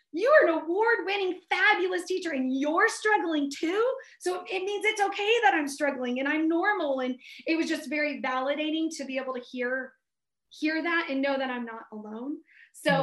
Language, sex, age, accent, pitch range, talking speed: English, female, 30-49, American, 255-305 Hz, 190 wpm